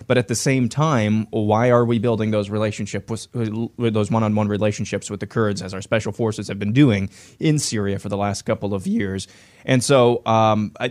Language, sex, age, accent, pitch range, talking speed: English, male, 30-49, American, 100-120 Hz, 210 wpm